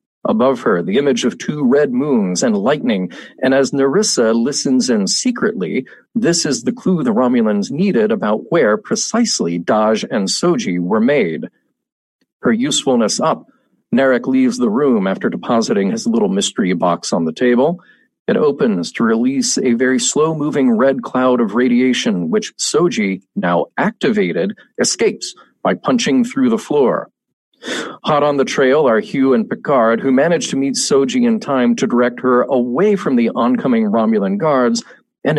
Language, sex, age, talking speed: English, male, 50-69, 160 wpm